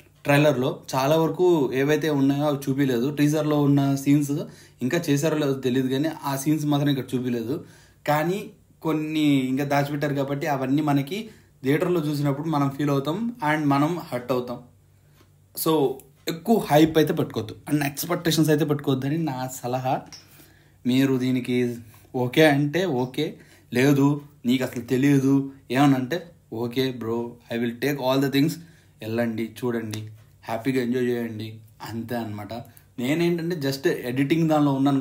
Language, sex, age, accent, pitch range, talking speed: Telugu, male, 30-49, native, 125-155 Hz, 135 wpm